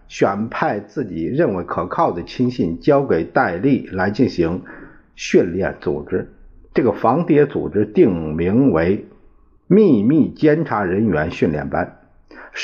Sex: male